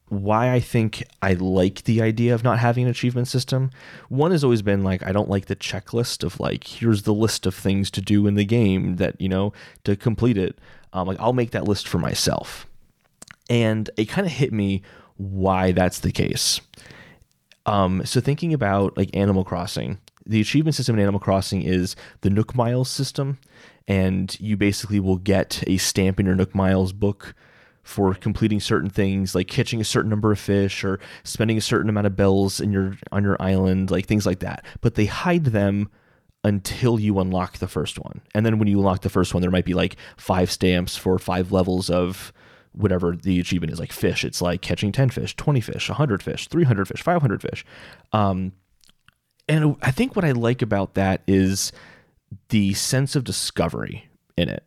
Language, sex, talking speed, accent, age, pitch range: English, male, 195 wpm, American, 30-49, 95-120 Hz